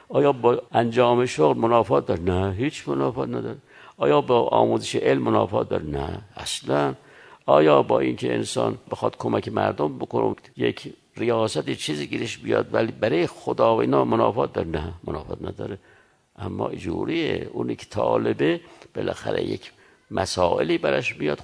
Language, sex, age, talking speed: Persian, male, 60-79, 145 wpm